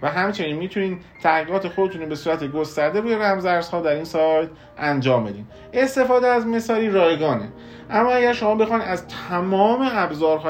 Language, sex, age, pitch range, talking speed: Persian, male, 40-59, 130-185 Hz, 155 wpm